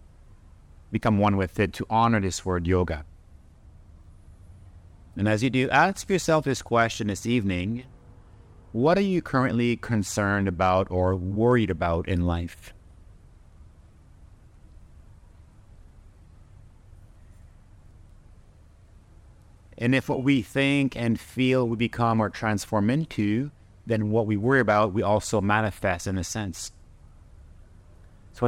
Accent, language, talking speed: American, Hebrew, 115 wpm